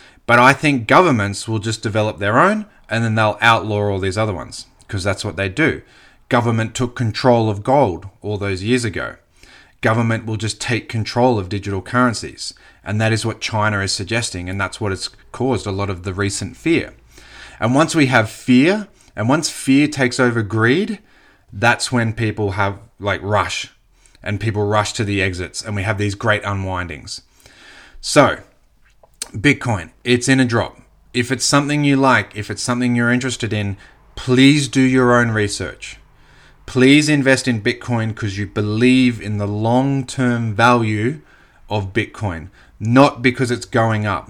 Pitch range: 105-125 Hz